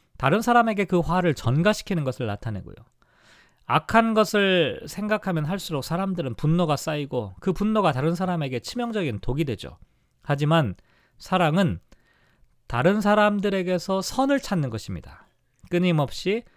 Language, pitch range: Korean, 135-195 Hz